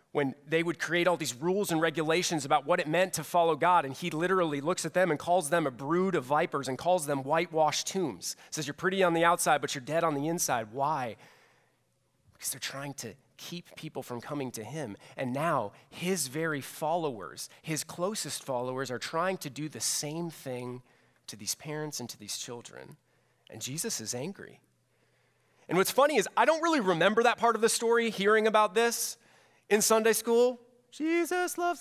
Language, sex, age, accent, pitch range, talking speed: English, male, 30-49, American, 130-215 Hz, 200 wpm